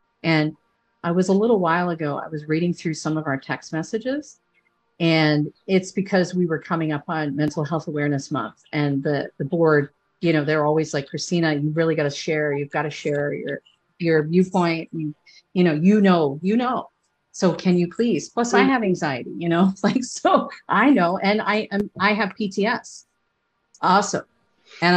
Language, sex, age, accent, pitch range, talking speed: English, female, 50-69, American, 155-200 Hz, 185 wpm